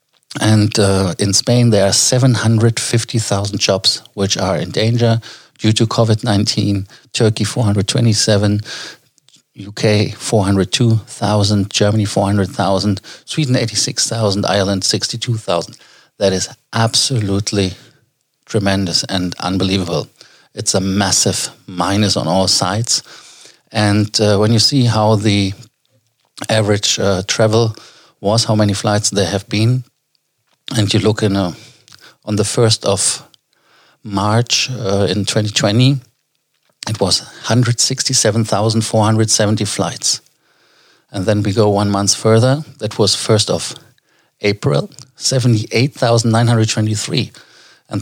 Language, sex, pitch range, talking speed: German, male, 100-120 Hz, 105 wpm